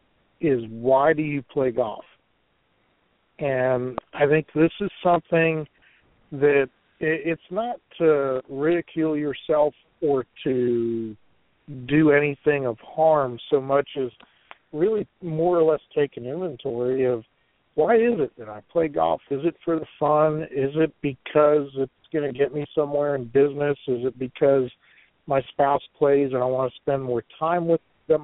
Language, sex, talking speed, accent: English, male, 155 wpm, American